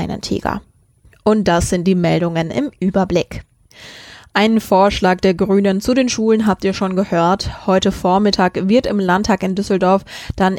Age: 20-39